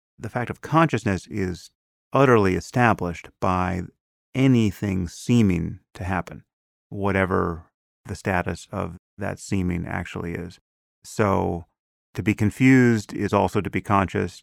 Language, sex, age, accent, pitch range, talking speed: English, male, 30-49, American, 90-110 Hz, 120 wpm